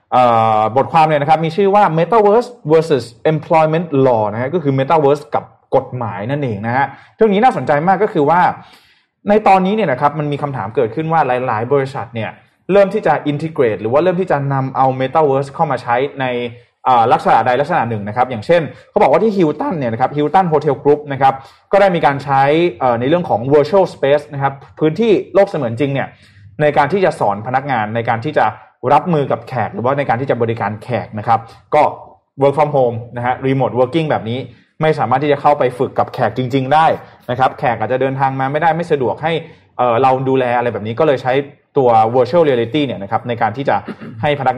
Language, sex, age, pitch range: Thai, male, 20-39, 120-160 Hz